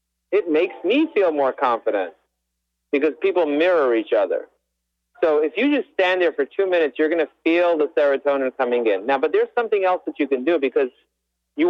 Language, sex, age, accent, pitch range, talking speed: English, male, 40-59, American, 125-205 Hz, 200 wpm